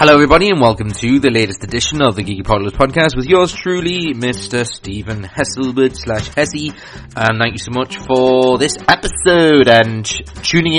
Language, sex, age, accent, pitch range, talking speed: English, male, 30-49, British, 100-135 Hz, 160 wpm